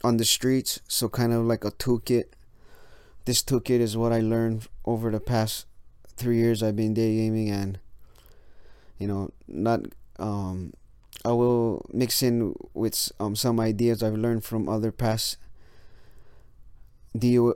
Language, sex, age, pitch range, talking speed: English, male, 20-39, 95-115 Hz, 145 wpm